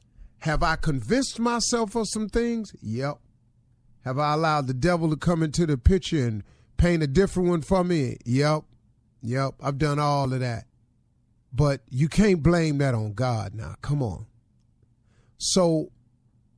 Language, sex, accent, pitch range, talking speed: English, male, American, 115-160 Hz, 155 wpm